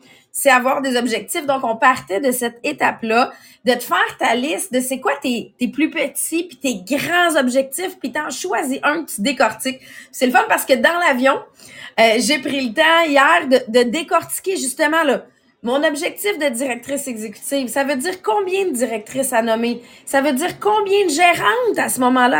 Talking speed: 195 wpm